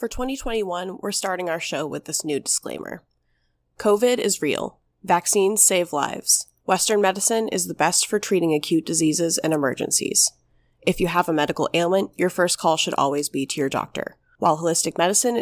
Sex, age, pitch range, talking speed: female, 20-39, 150-195 Hz, 175 wpm